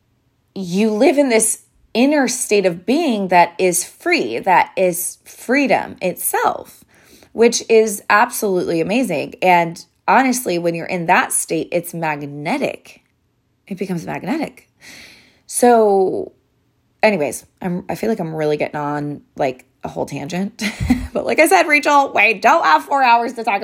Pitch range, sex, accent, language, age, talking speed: 160-245 Hz, female, American, English, 20-39, 145 wpm